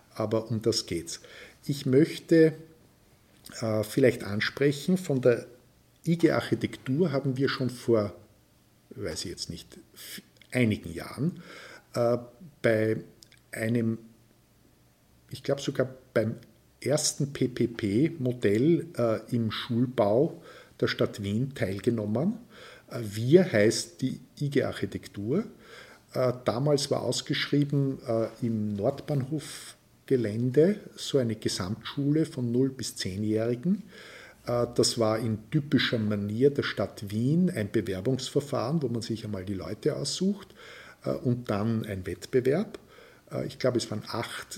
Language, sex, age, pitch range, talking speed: German, male, 50-69, 110-140 Hz, 115 wpm